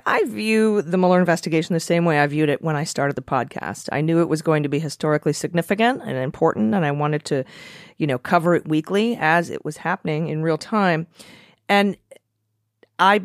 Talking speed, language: 205 wpm, English